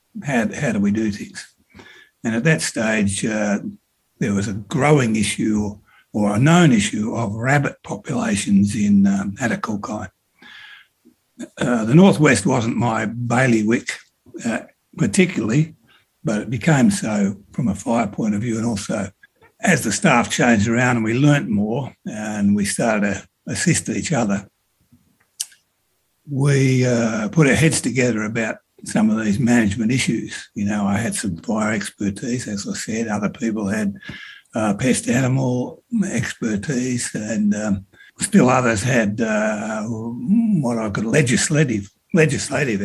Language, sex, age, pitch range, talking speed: English, male, 60-79, 105-160 Hz, 145 wpm